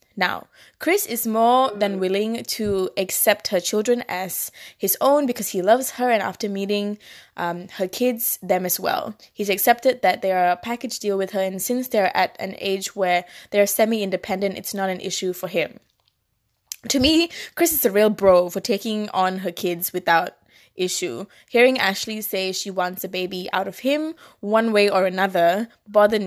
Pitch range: 185-235 Hz